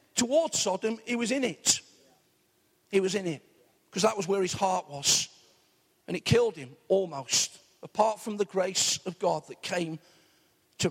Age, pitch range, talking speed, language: 50-69, 180-230 Hz, 170 wpm, English